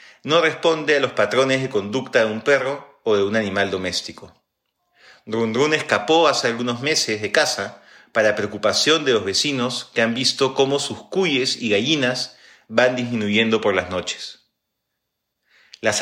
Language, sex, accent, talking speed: Spanish, male, Argentinian, 155 wpm